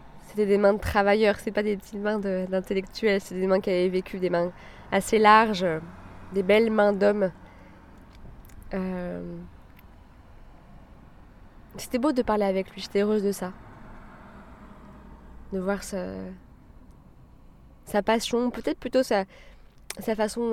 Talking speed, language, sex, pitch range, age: 135 wpm, French, female, 185-230 Hz, 20-39